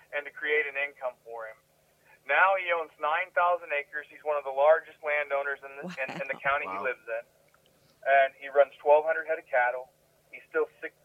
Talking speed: 200 wpm